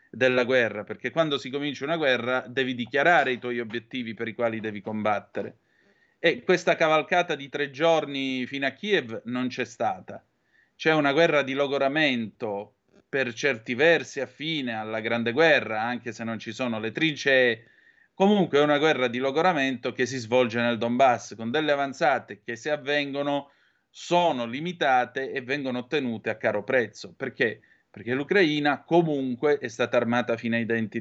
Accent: native